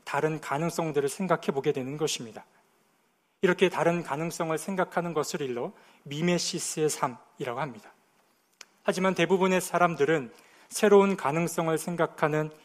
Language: Korean